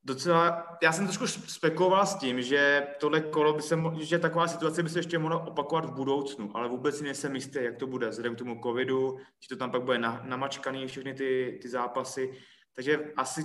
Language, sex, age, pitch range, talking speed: Czech, male, 20-39, 130-150 Hz, 205 wpm